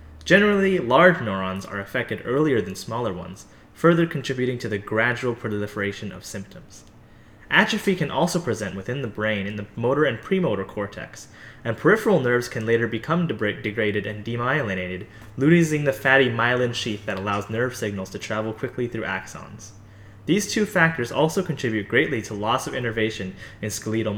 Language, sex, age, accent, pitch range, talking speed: English, male, 20-39, American, 105-135 Hz, 160 wpm